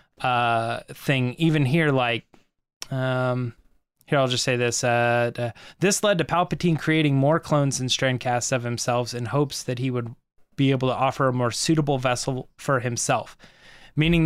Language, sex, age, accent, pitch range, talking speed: English, male, 20-39, American, 130-175 Hz, 175 wpm